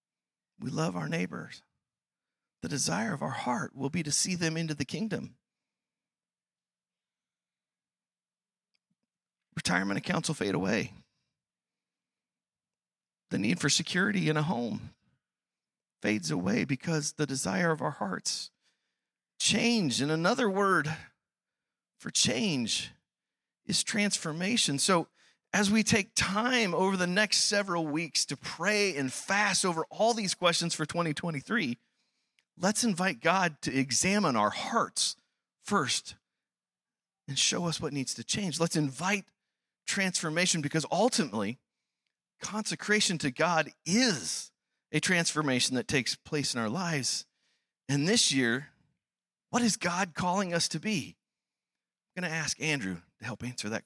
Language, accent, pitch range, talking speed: English, American, 145-205 Hz, 130 wpm